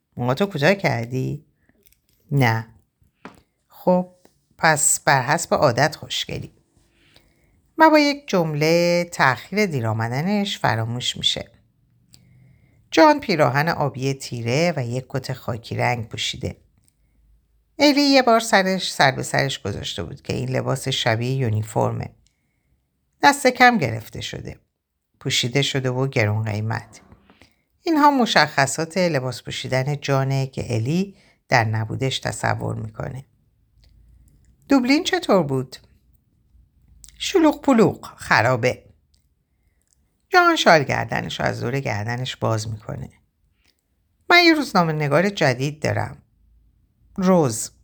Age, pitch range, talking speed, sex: 50-69, 115-190 Hz, 110 wpm, female